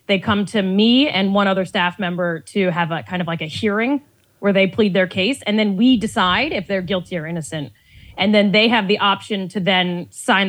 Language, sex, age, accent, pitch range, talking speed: English, female, 20-39, American, 185-245 Hz, 230 wpm